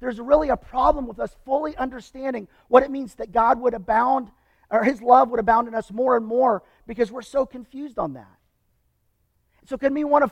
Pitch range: 215-265 Hz